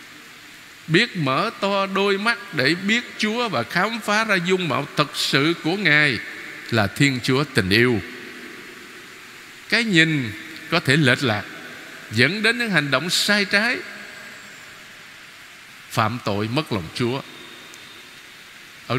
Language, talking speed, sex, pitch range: Vietnamese, 135 wpm, male, 130-195 Hz